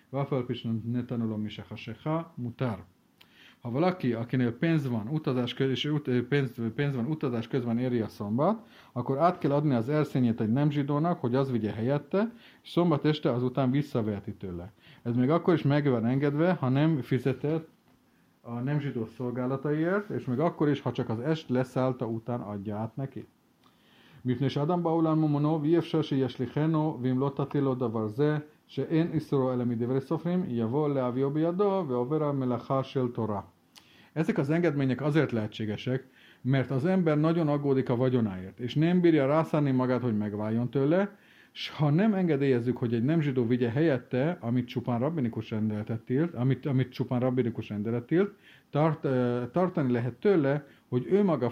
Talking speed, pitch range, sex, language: 140 wpm, 120-155 Hz, male, Hungarian